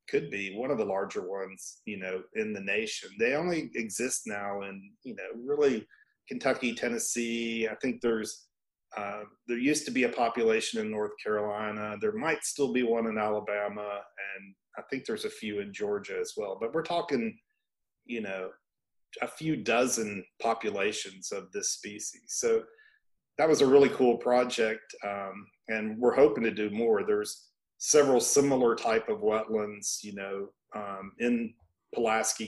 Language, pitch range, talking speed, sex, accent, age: English, 105-160 Hz, 165 wpm, male, American, 40-59